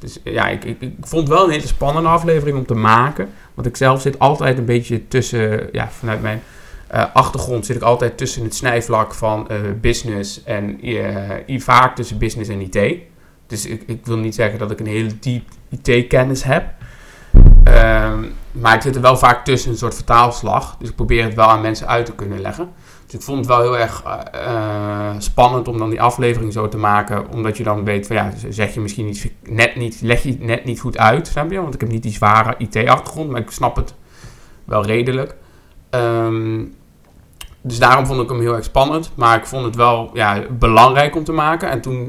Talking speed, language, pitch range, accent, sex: 210 wpm, Dutch, 110-125 Hz, Dutch, male